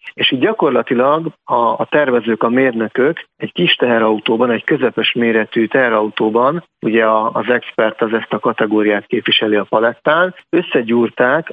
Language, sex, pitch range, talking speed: Hungarian, male, 110-130 Hz, 130 wpm